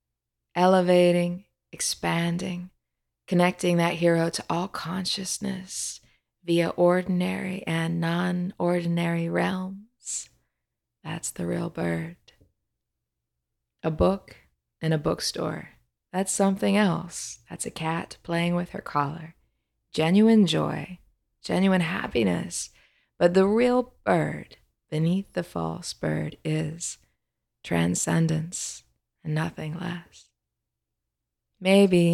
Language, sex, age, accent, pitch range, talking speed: English, female, 20-39, American, 125-185 Hz, 95 wpm